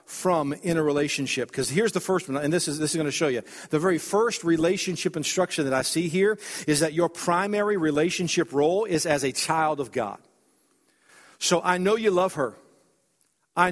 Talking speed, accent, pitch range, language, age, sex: 200 wpm, American, 155-200 Hz, English, 50-69, male